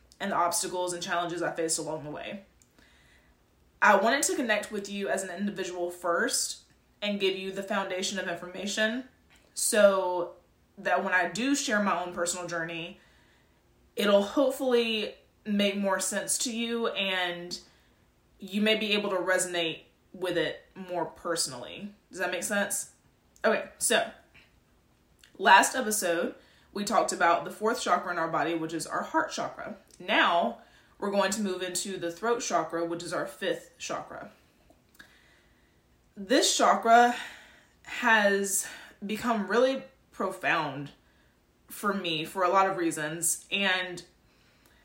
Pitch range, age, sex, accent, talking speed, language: 170-215 Hz, 20-39, female, American, 140 wpm, English